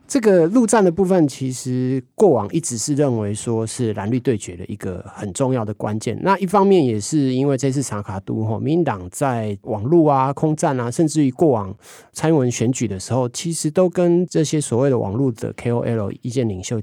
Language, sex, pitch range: Chinese, male, 115-165 Hz